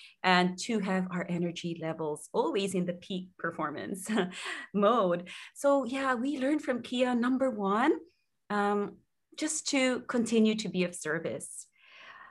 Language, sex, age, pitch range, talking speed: English, female, 30-49, 185-230 Hz, 135 wpm